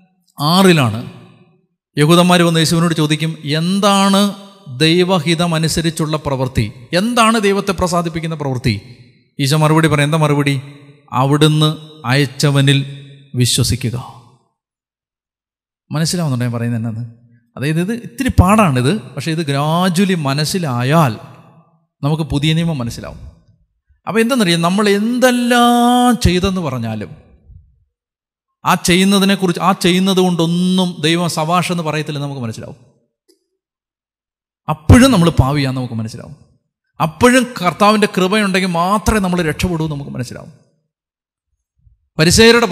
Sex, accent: male, native